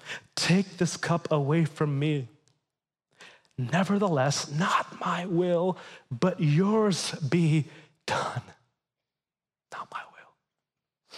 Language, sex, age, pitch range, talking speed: English, male, 30-49, 155-235 Hz, 90 wpm